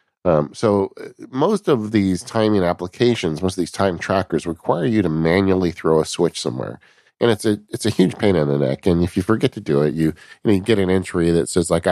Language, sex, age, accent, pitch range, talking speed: English, male, 40-59, American, 85-110 Hz, 230 wpm